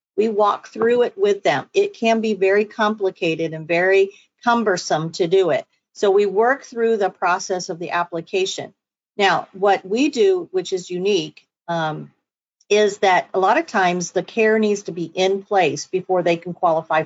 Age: 50-69